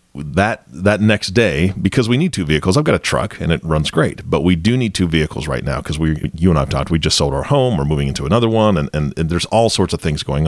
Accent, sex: American, male